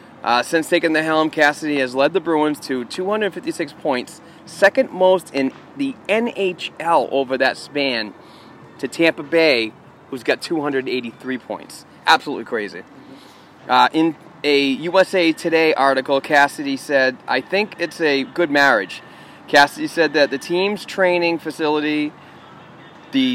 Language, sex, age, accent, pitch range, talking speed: English, male, 30-49, American, 130-160 Hz, 135 wpm